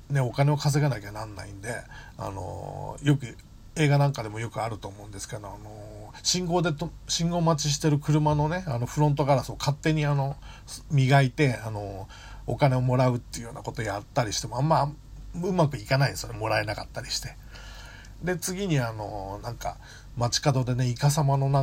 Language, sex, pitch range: Japanese, male, 110-145 Hz